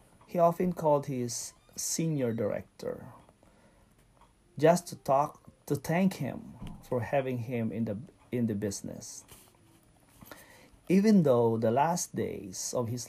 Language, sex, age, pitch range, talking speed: English, male, 40-59, 115-155 Hz, 125 wpm